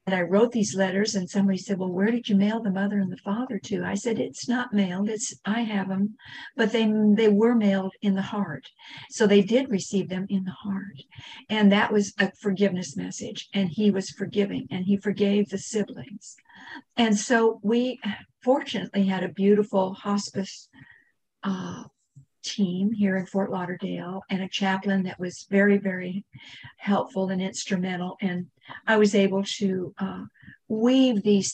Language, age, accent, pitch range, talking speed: English, 50-69, American, 185-210 Hz, 175 wpm